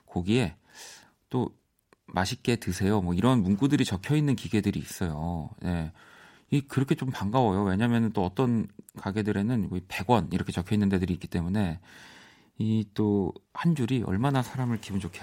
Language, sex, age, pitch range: Korean, male, 40-59, 95-130 Hz